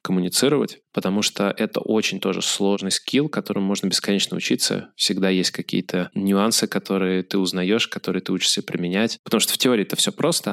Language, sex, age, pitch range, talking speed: Russian, male, 20-39, 95-105 Hz, 170 wpm